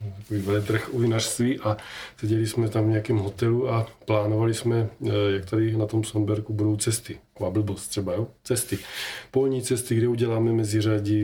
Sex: male